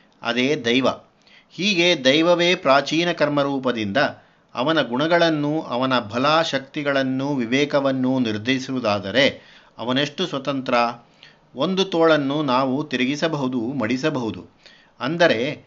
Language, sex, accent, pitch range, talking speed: Kannada, male, native, 130-160 Hz, 80 wpm